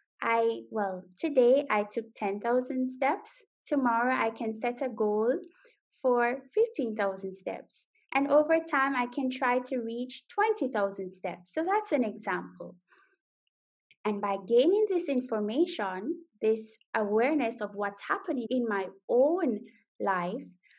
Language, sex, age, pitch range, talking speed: English, female, 20-39, 220-295 Hz, 125 wpm